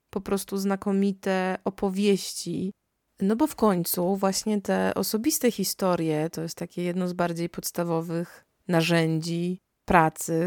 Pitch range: 165-200 Hz